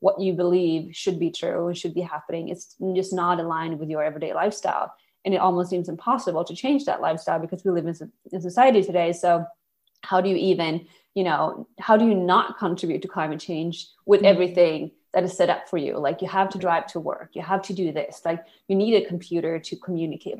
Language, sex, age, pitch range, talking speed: English, female, 20-39, 170-200 Hz, 225 wpm